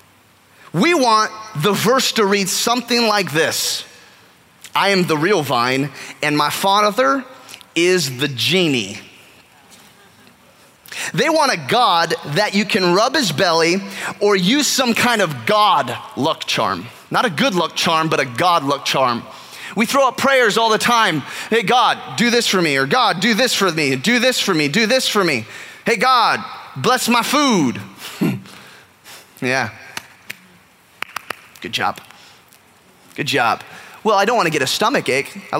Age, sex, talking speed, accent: 20-39, male, 160 wpm, American